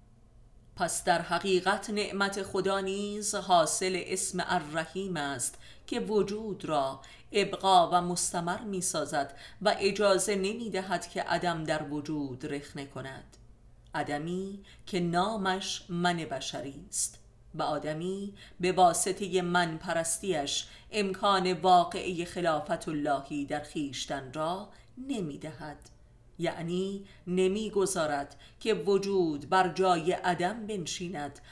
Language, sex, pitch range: Persian, female, 150-190 Hz